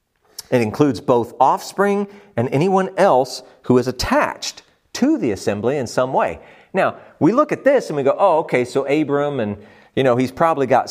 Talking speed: 185 wpm